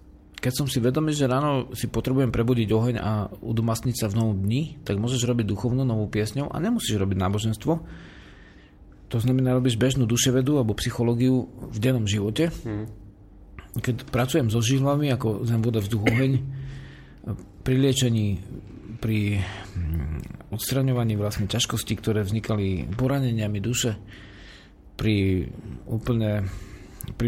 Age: 40-59